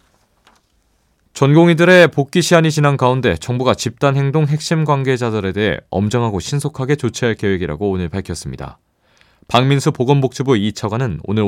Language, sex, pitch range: Korean, male, 90-140 Hz